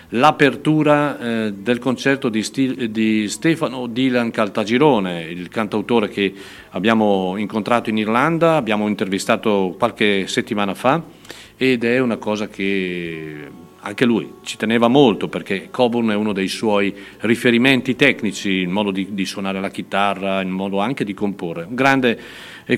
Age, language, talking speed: 50-69, Italian, 140 wpm